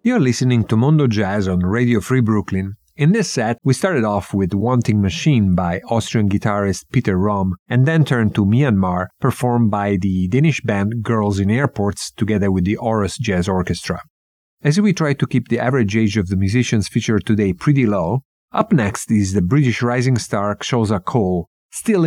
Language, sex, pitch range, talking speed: English, male, 100-125 Hz, 180 wpm